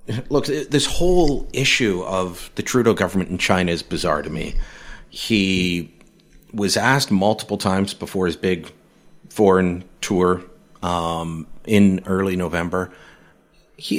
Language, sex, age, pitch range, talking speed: English, male, 40-59, 90-120 Hz, 125 wpm